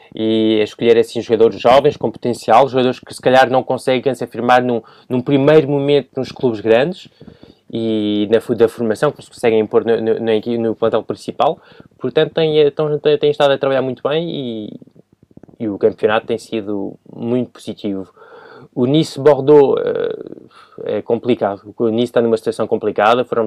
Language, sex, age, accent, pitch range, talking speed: Portuguese, male, 20-39, Brazilian, 110-145 Hz, 165 wpm